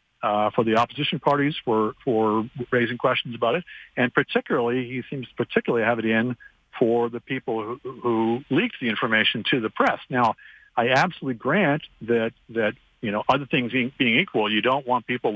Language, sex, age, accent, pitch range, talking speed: English, male, 50-69, American, 115-140 Hz, 185 wpm